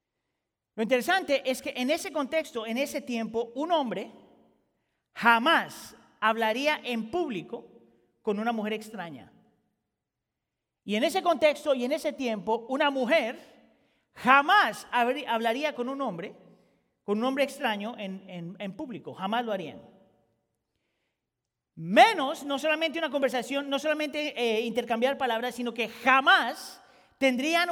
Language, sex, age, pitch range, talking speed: Spanish, male, 40-59, 215-280 Hz, 130 wpm